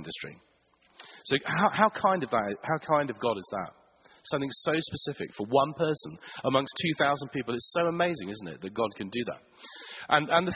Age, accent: 40-59, British